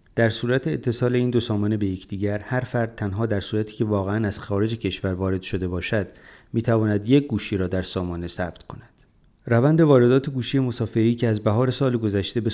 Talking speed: 190 wpm